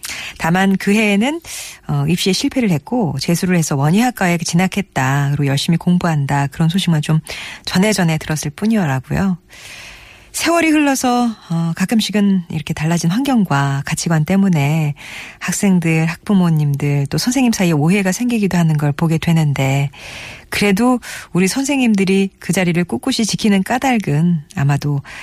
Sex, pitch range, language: female, 150-215 Hz, Korean